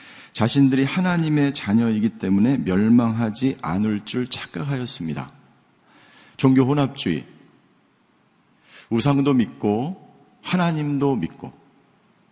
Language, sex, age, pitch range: Korean, male, 50-69, 115-145 Hz